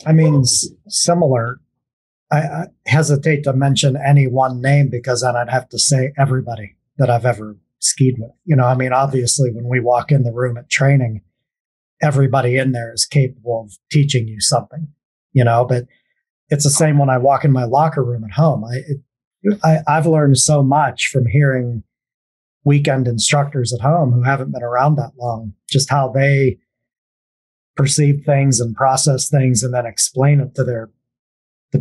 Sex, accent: male, American